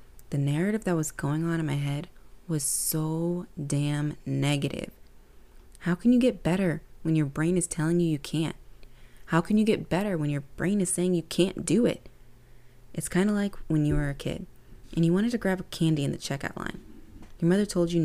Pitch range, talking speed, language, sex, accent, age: 145-185 Hz, 215 wpm, English, female, American, 20-39